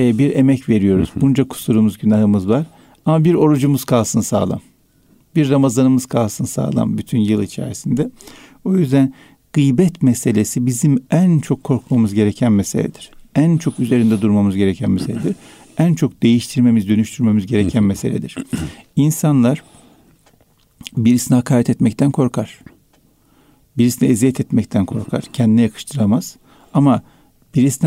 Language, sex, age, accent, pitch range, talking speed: Turkish, male, 60-79, native, 110-140 Hz, 115 wpm